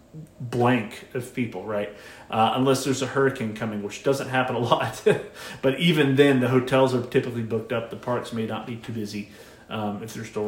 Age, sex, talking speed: 30-49, male, 200 wpm